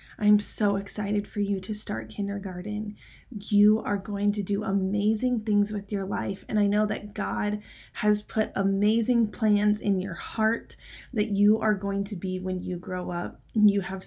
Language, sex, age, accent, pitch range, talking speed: English, female, 20-39, American, 195-215 Hz, 180 wpm